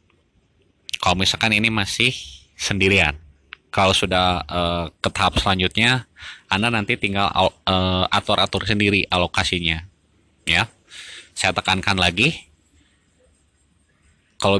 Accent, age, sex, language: native, 20-39, male, Indonesian